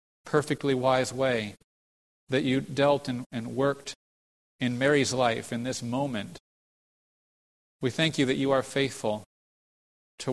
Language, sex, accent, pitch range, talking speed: English, male, American, 110-135 Hz, 135 wpm